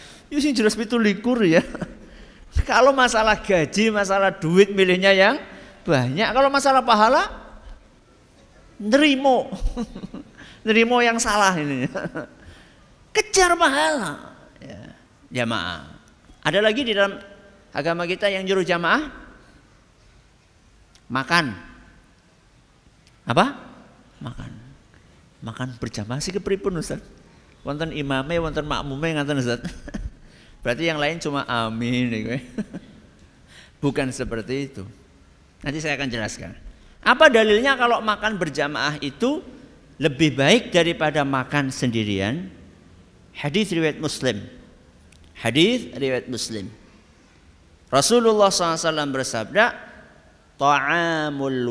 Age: 50-69